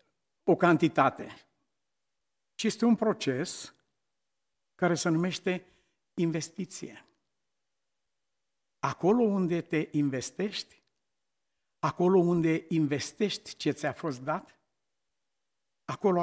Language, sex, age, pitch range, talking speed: Romanian, male, 60-79, 155-245 Hz, 80 wpm